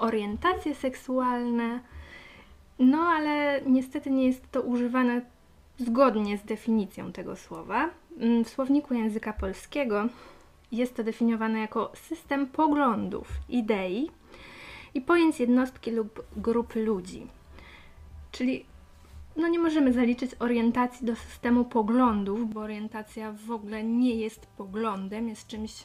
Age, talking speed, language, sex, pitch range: 20-39, 115 wpm, Polish, female, 210-255 Hz